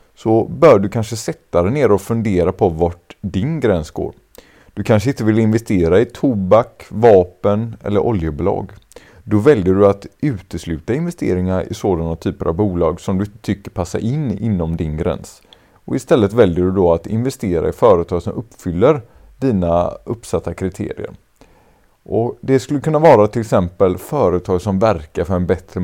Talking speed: 165 wpm